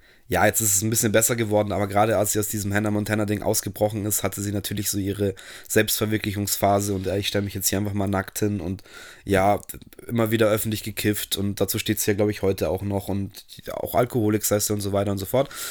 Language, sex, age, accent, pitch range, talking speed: German, male, 20-39, German, 100-115 Hz, 230 wpm